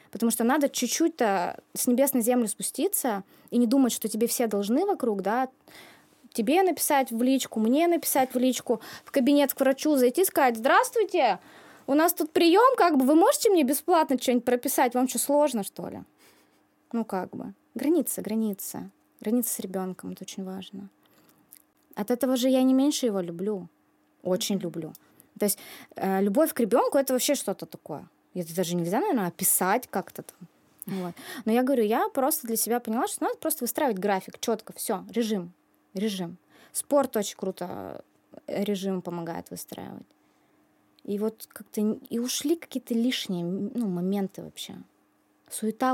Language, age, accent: Russian, 20-39, native